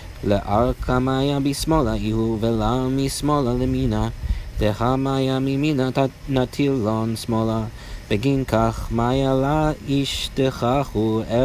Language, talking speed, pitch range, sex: English, 110 wpm, 110-135 Hz, male